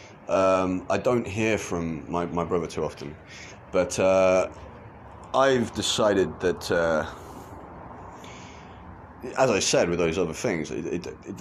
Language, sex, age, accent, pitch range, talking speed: English, male, 30-49, British, 85-100 Hz, 135 wpm